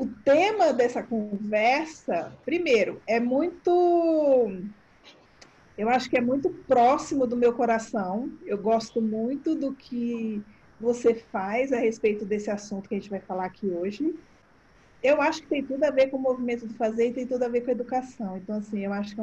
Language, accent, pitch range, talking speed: Portuguese, Brazilian, 220-275 Hz, 185 wpm